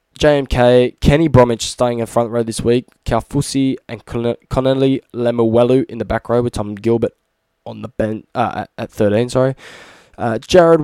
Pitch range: 115-135 Hz